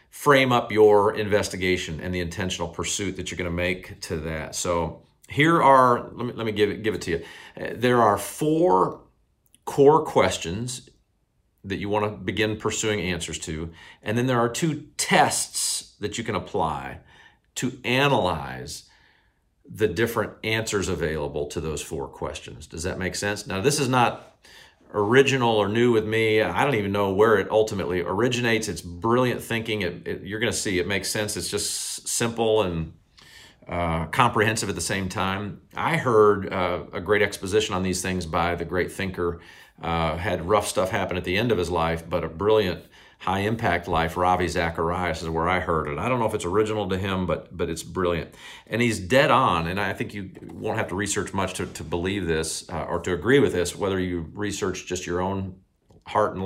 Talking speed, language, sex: 195 wpm, English, male